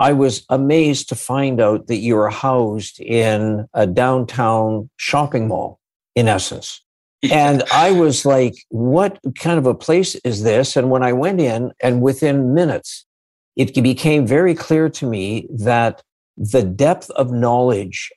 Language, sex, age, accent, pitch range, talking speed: English, male, 60-79, American, 115-140 Hz, 155 wpm